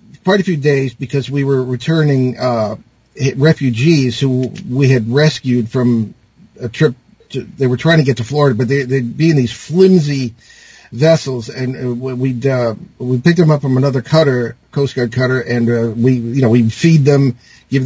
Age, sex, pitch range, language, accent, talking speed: 50-69, male, 120-150 Hz, English, American, 185 wpm